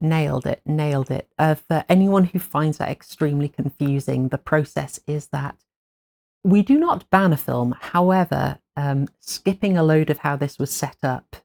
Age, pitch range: 40-59, 135-170 Hz